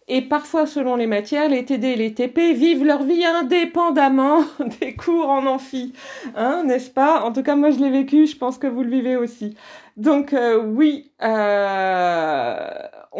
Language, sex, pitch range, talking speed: French, female, 220-290 Hz, 175 wpm